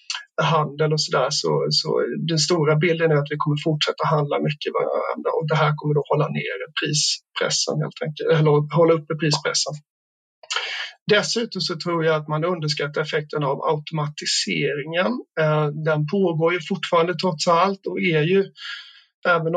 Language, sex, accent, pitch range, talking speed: Swedish, male, native, 150-190 Hz, 155 wpm